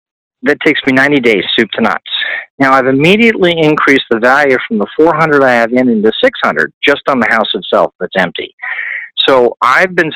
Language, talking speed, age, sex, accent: English, 190 wpm, 50-69, male, American